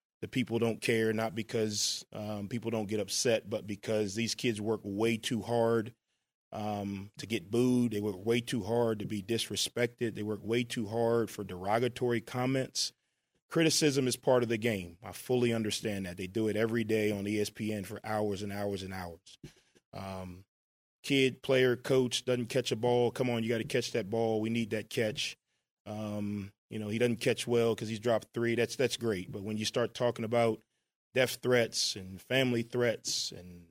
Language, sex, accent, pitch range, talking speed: English, male, American, 105-125 Hz, 190 wpm